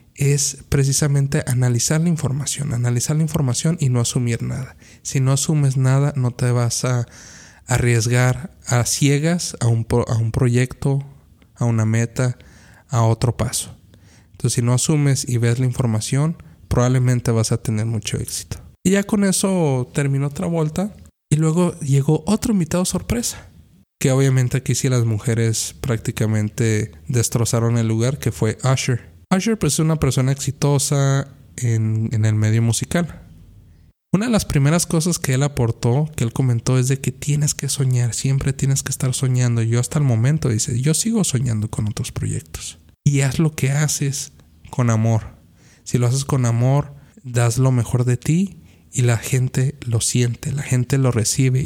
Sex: male